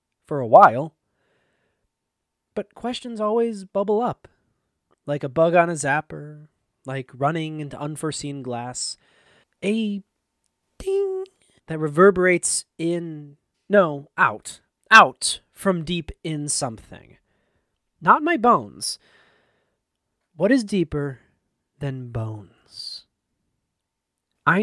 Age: 30-49